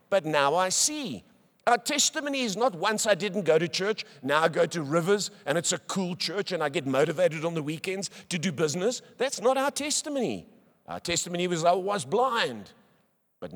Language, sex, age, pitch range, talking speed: English, male, 50-69, 140-210 Hz, 200 wpm